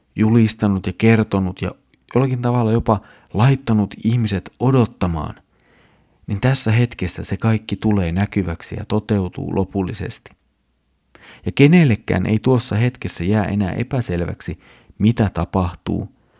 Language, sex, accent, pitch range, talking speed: Finnish, male, native, 90-115 Hz, 110 wpm